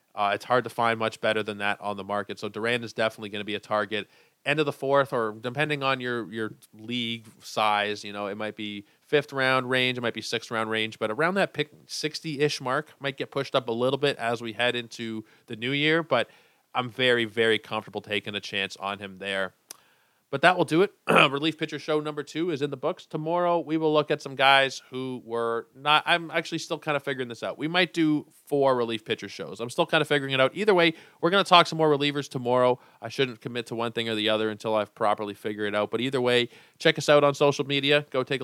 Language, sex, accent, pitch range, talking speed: English, male, American, 110-145 Hz, 250 wpm